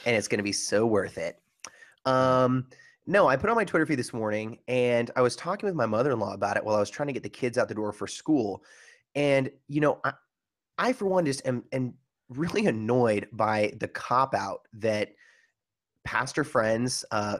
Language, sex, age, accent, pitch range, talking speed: English, male, 30-49, American, 105-145 Hz, 205 wpm